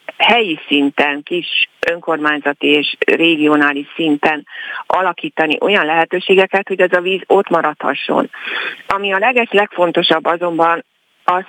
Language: Hungarian